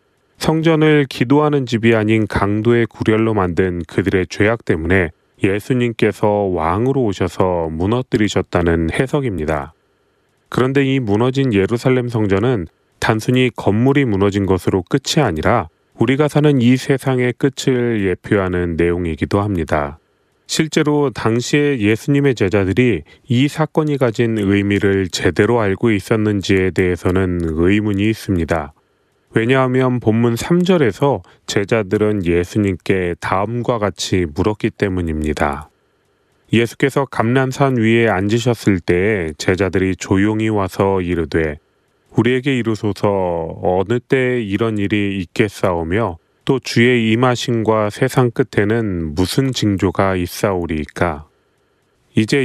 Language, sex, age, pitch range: Korean, male, 30-49, 95-125 Hz